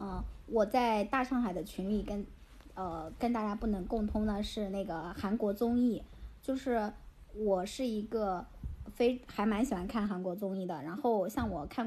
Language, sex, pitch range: Chinese, male, 190-235 Hz